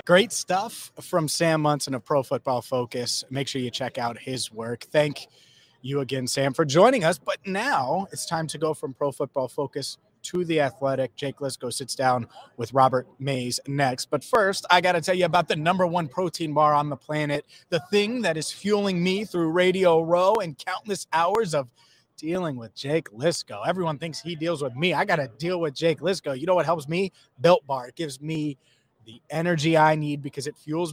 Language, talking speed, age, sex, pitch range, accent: English, 210 wpm, 30-49, male, 135-175 Hz, American